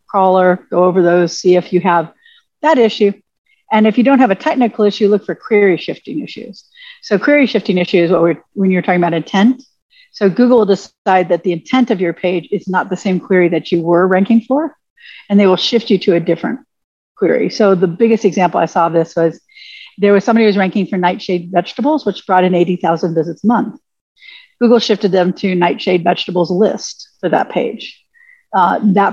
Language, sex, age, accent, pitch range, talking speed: English, female, 50-69, American, 180-230 Hz, 210 wpm